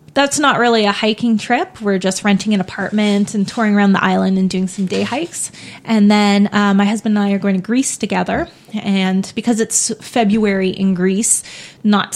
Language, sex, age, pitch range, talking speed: English, female, 30-49, 190-225 Hz, 195 wpm